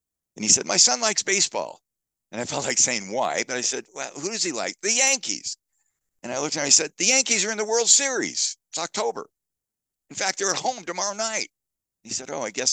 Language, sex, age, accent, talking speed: English, male, 60-79, American, 245 wpm